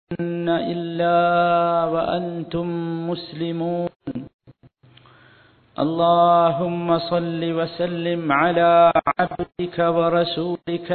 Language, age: Malayalam, 50-69